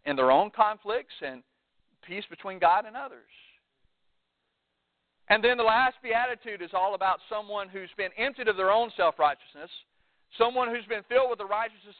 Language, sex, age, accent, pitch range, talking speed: English, male, 40-59, American, 185-250 Hz, 165 wpm